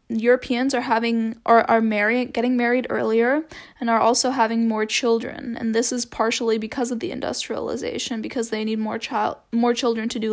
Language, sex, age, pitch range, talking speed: English, female, 10-29, 225-250 Hz, 185 wpm